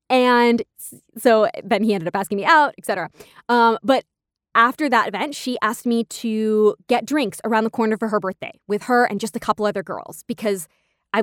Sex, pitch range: female, 205-250 Hz